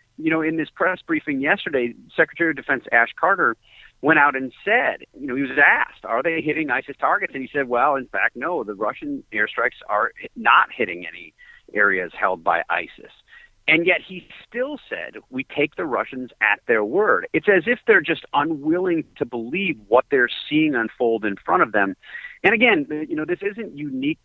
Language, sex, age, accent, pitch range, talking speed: English, male, 40-59, American, 115-185 Hz, 195 wpm